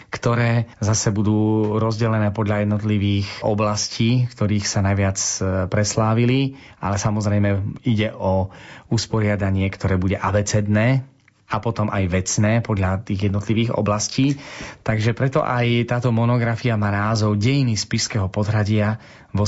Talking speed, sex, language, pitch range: 115 wpm, male, Slovak, 100-125 Hz